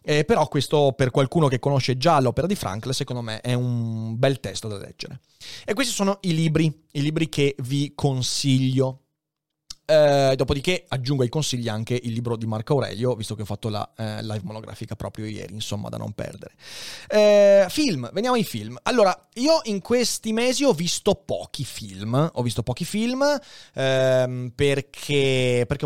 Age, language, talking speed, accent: 30-49, Italian, 165 wpm, native